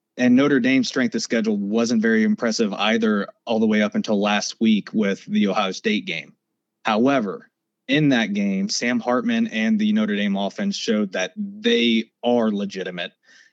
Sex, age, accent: male, 20-39, American